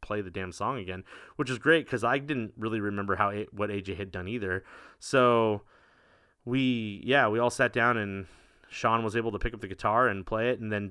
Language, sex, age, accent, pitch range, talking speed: English, male, 30-49, American, 100-120 Hz, 220 wpm